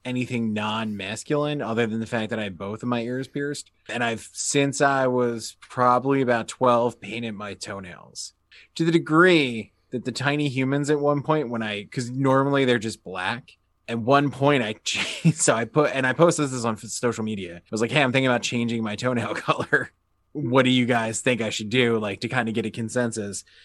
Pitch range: 110-140 Hz